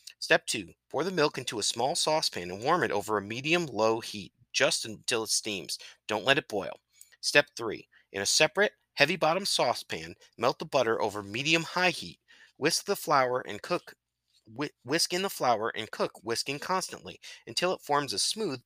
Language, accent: English, American